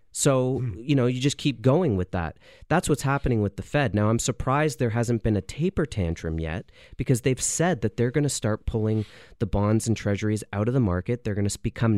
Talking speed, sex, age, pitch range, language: 230 wpm, male, 30-49, 100-135 Hz, English